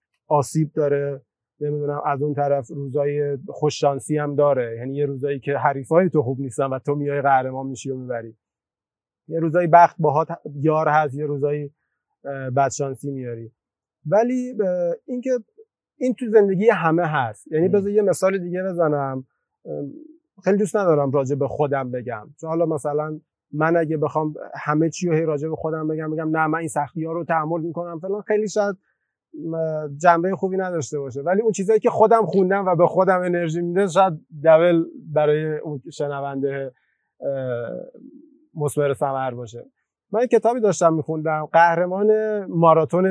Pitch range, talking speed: 145-190 Hz, 150 wpm